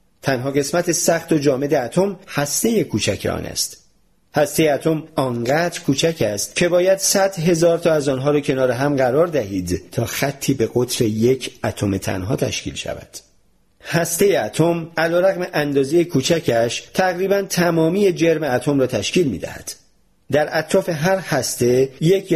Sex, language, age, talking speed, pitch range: male, Persian, 40-59, 145 wpm, 130-175 Hz